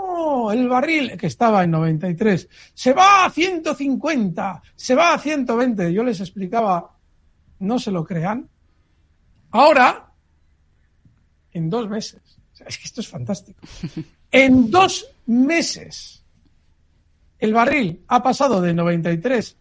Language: Spanish